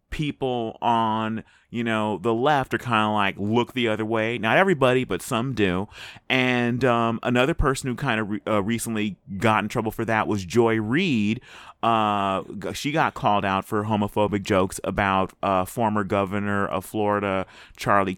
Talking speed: 160 wpm